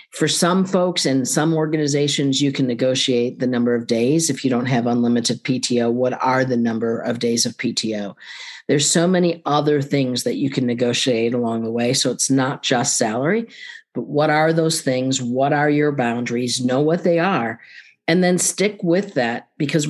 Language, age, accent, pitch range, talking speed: English, 50-69, American, 125-155 Hz, 190 wpm